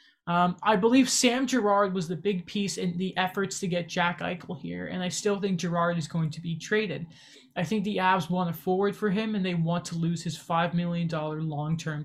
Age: 20-39